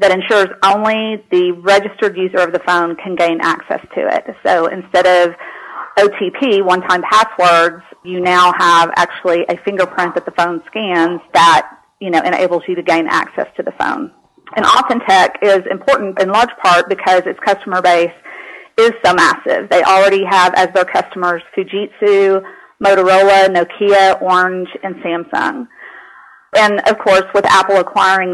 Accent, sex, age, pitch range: American, female, 40-59, 175-200 Hz